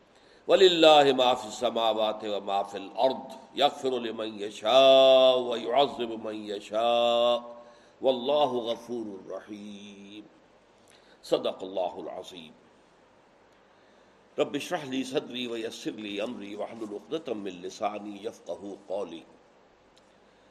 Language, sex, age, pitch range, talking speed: Urdu, male, 50-69, 110-150 Hz, 30 wpm